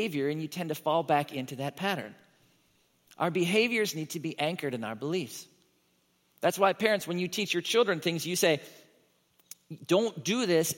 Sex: male